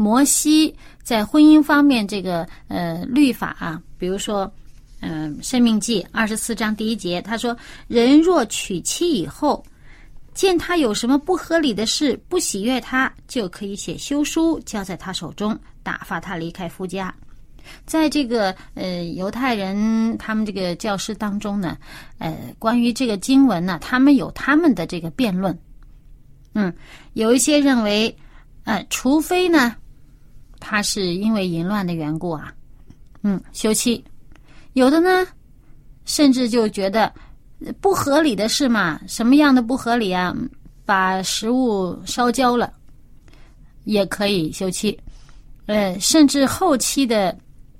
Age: 30-49